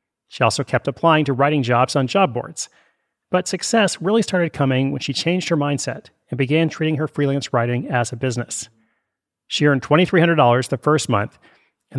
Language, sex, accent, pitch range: English, male, American, 125-165 Hz